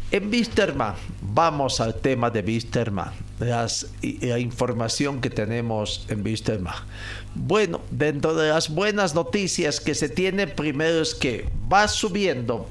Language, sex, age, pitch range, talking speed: Spanish, male, 50-69, 105-150 Hz, 125 wpm